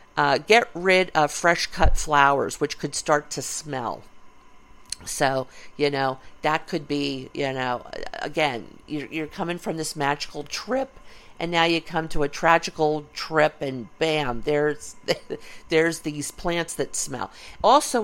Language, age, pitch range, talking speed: English, 50-69, 140-165 Hz, 145 wpm